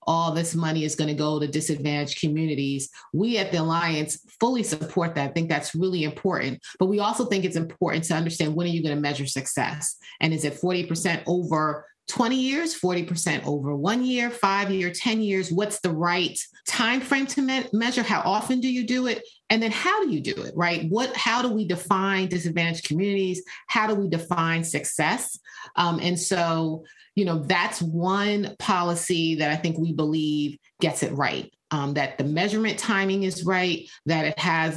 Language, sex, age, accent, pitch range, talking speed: English, female, 30-49, American, 155-195 Hz, 195 wpm